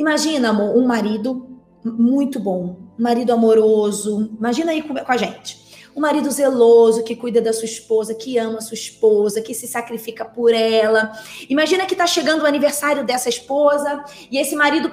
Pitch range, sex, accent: 235-305 Hz, female, Brazilian